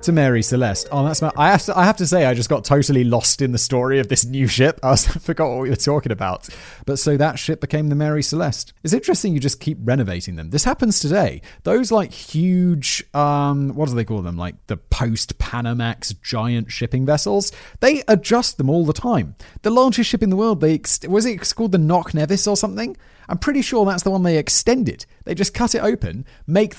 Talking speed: 225 wpm